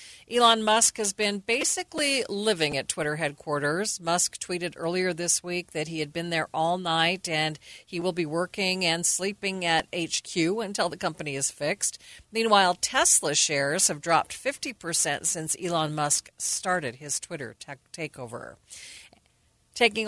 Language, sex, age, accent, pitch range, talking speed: English, female, 40-59, American, 155-200 Hz, 150 wpm